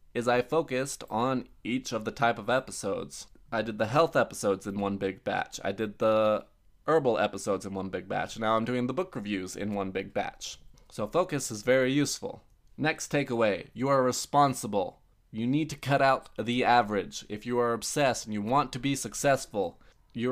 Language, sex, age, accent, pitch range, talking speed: English, male, 20-39, American, 110-130 Hz, 195 wpm